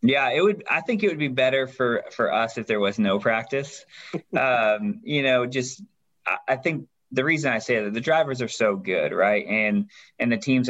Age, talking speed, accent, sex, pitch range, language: 20-39, 220 wpm, American, male, 105-130 Hz, English